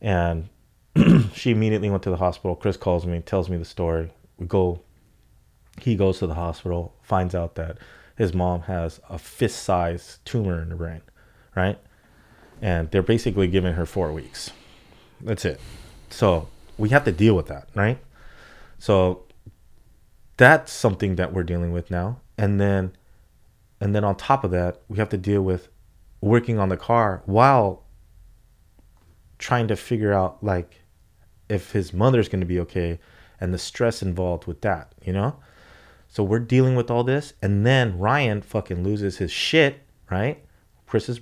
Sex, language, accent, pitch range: male, English, American, 90-110 Hz